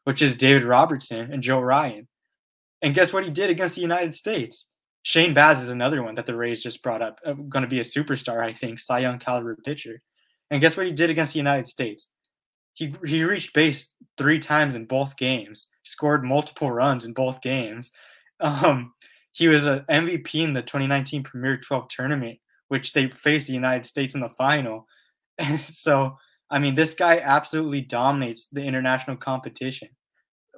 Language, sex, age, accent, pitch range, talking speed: English, male, 20-39, American, 125-150 Hz, 185 wpm